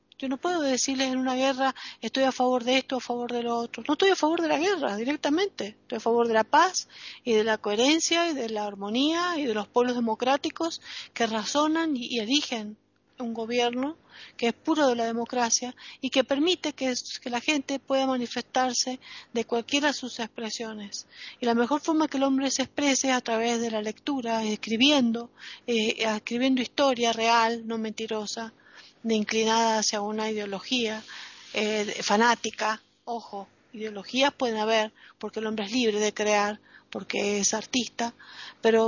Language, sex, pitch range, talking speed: Spanish, female, 220-265 Hz, 175 wpm